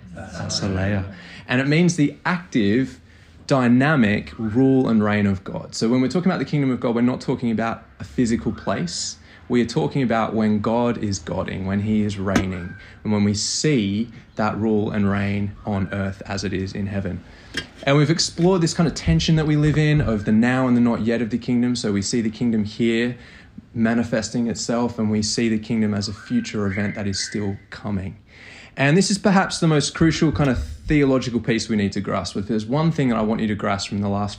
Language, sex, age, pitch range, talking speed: English, male, 20-39, 100-130 Hz, 220 wpm